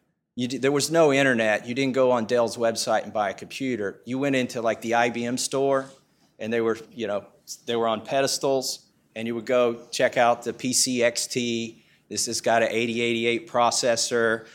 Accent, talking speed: American, 190 wpm